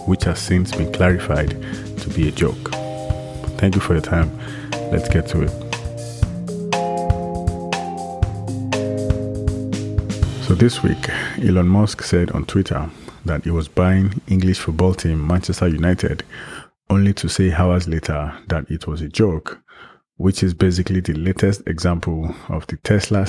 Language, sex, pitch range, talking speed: English, male, 85-100 Hz, 140 wpm